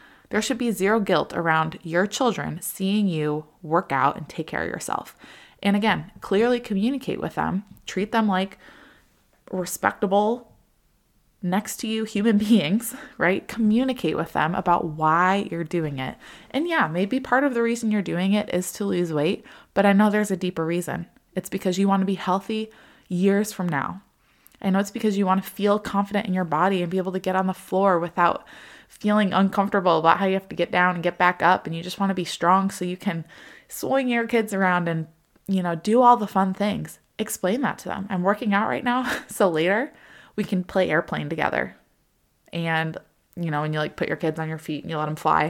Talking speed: 210 wpm